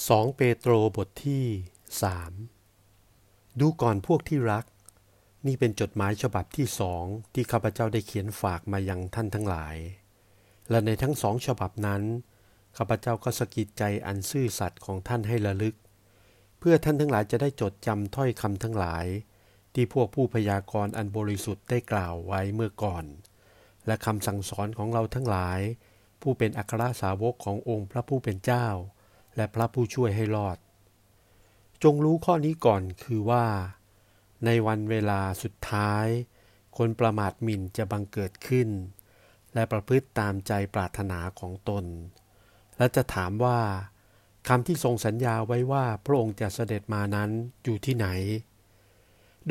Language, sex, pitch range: Thai, male, 100-120 Hz